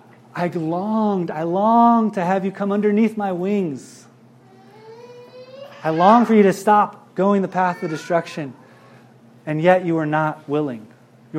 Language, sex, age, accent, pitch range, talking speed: English, male, 30-49, American, 140-195 Hz, 155 wpm